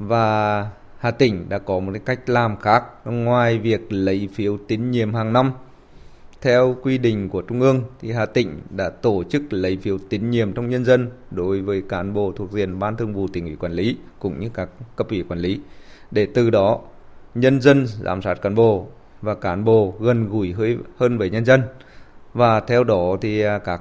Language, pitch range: Vietnamese, 95-120 Hz